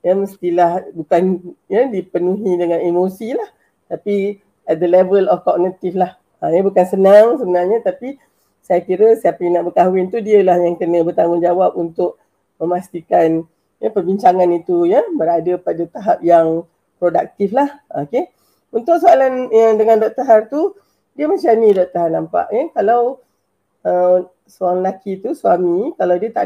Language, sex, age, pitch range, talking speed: Malay, female, 40-59, 180-240 Hz, 160 wpm